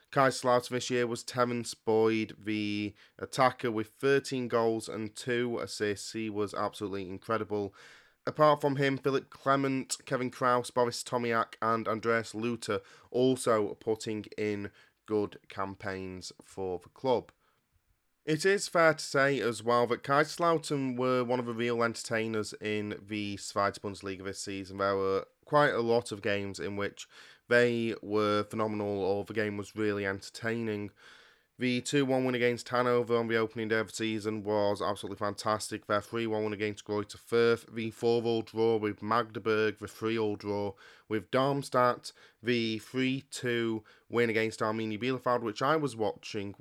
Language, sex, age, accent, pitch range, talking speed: English, male, 30-49, British, 105-125 Hz, 150 wpm